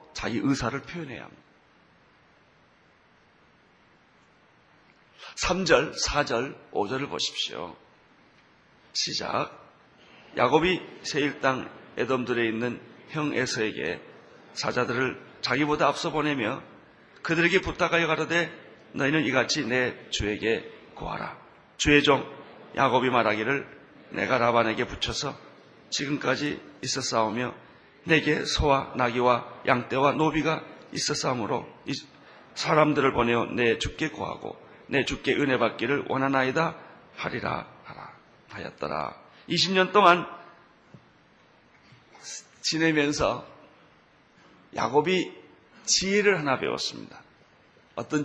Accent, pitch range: native, 120-165 Hz